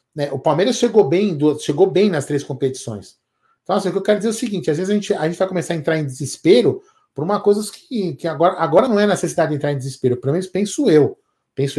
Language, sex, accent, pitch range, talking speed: Portuguese, male, Brazilian, 140-195 Hz, 255 wpm